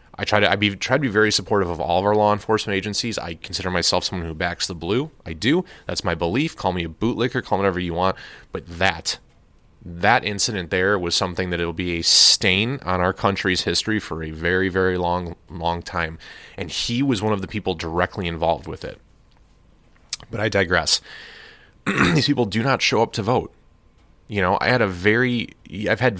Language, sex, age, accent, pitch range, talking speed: English, male, 30-49, American, 90-115 Hz, 210 wpm